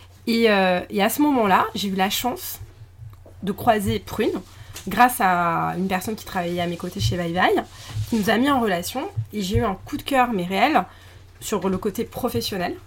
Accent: French